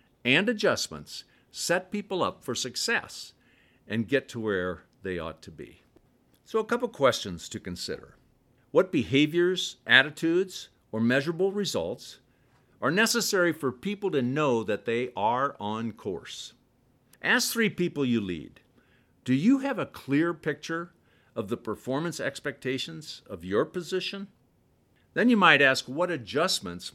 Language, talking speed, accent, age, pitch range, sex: English, 140 wpm, American, 50-69, 115-175 Hz, male